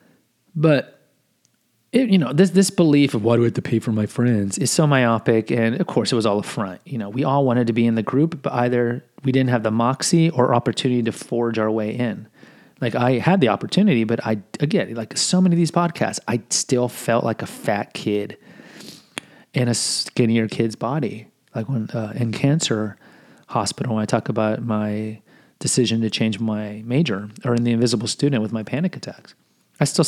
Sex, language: male, English